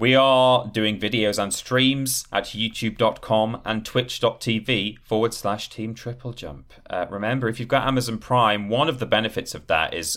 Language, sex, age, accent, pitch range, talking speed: English, male, 30-49, British, 105-130 Hz, 165 wpm